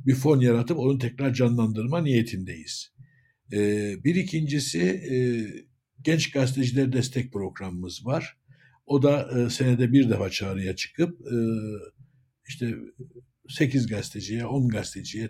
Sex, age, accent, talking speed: male, 60-79, native, 100 wpm